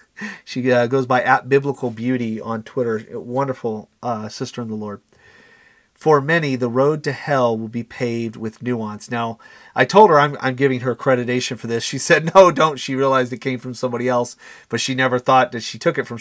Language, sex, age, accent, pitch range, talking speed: English, male, 40-59, American, 120-140 Hz, 210 wpm